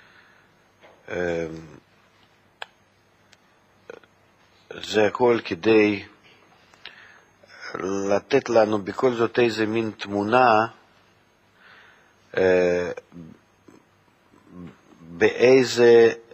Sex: male